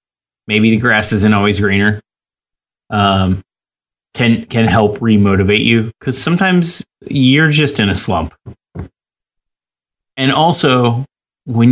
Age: 30-49